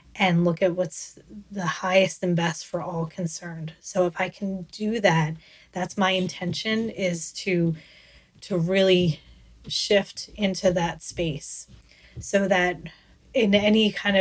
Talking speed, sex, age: 140 wpm, female, 20-39